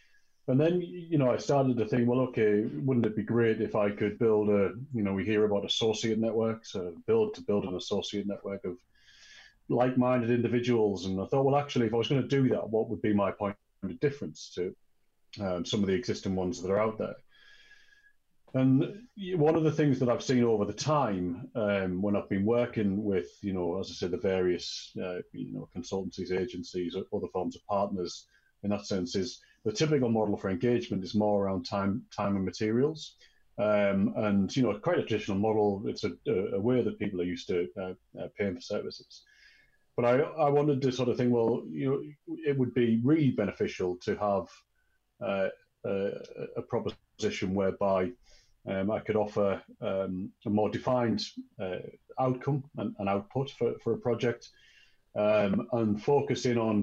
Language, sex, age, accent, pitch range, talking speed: English, male, 30-49, British, 100-130 Hz, 195 wpm